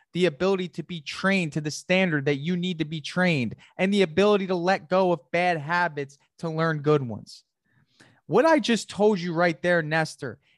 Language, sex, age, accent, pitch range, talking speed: English, male, 20-39, American, 145-190 Hz, 200 wpm